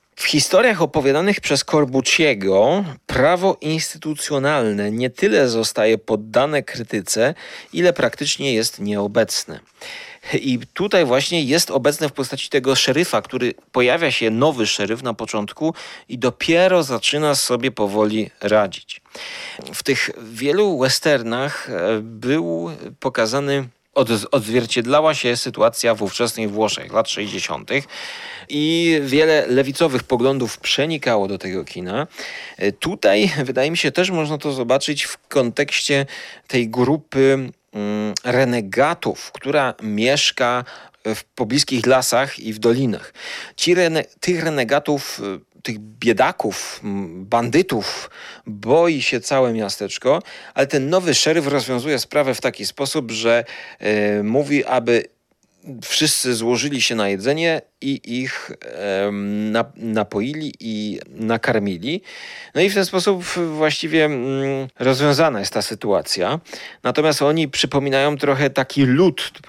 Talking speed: 115 wpm